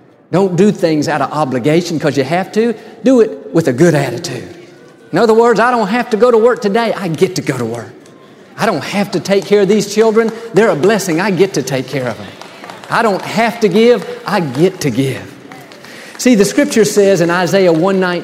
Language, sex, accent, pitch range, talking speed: English, male, American, 150-205 Hz, 220 wpm